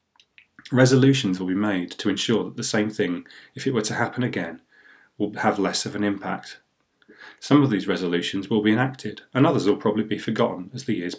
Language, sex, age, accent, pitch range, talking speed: English, male, 30-49, British, 95-120 Hz, 205 wpm